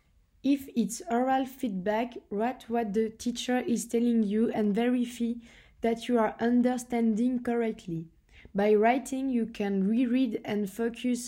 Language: French